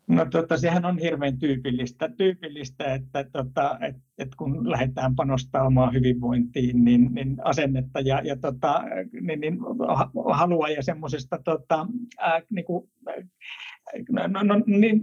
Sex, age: male, 60-79